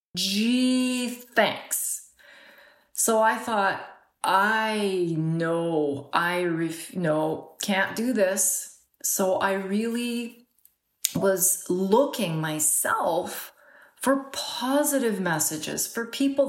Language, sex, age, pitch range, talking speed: English, female, 40-59, 185-245 Hz, 85 wpm